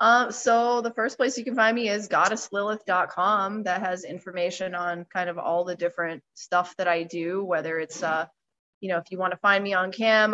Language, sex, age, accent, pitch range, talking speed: English, female, 20-39, American, 180-225 Hz, 215 wpm